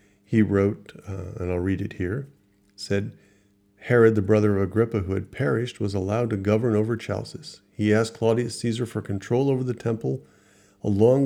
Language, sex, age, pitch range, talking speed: English, male, 40-59, 100-115 Hz, 175 wpm